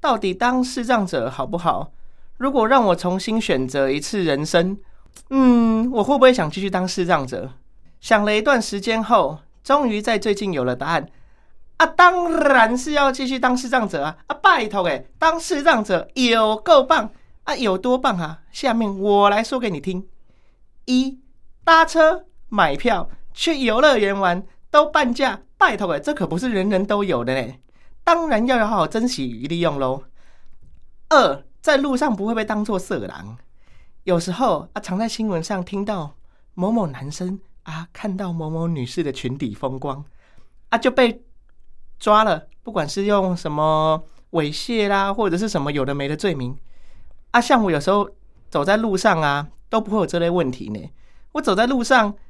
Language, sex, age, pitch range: Chinese, male, 30-49, 170-255 Hz